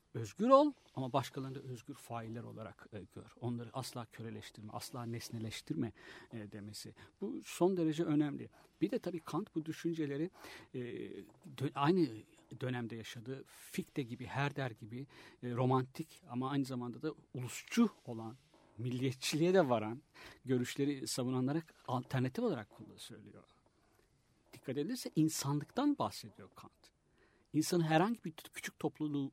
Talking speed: 115 wpm